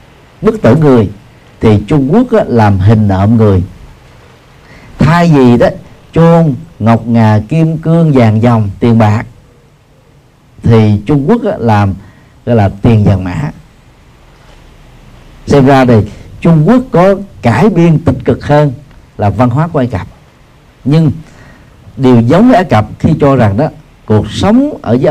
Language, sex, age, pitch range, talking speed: Vietnamese, male, 50-69, 105-150 Hz, 155 wpm